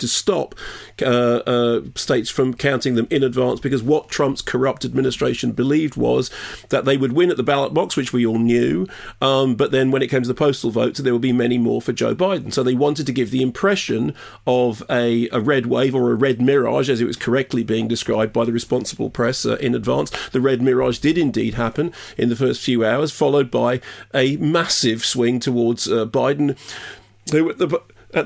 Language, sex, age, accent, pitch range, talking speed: English, male, 40-59, British, 125-145 Hz, 205 wpm